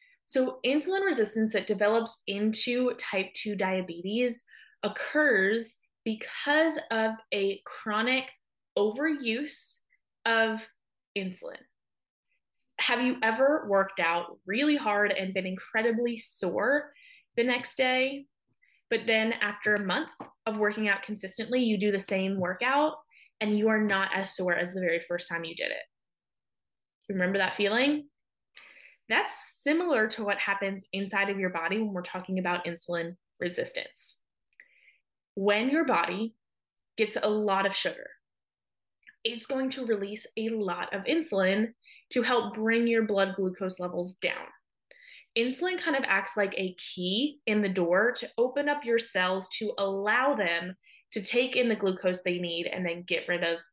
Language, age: English, 20-39